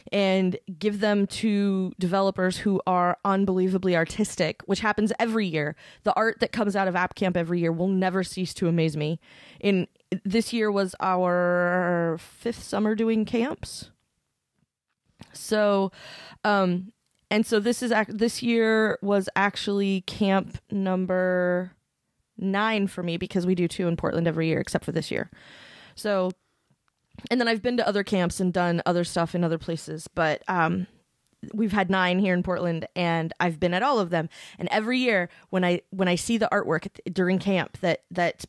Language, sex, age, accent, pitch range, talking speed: English, female, 20-39, American, 175-205 Hz, 170 wpm